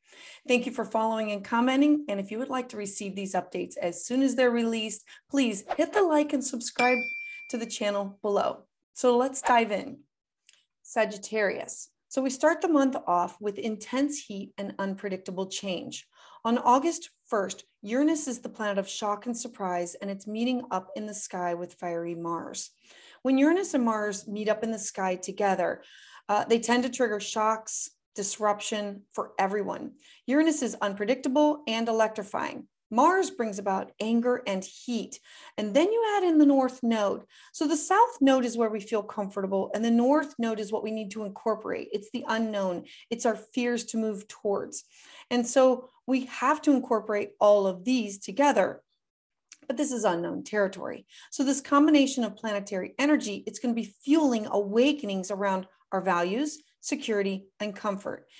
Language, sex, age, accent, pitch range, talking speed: English, female, 30-49, American, 205-270 Hz, 170 wpm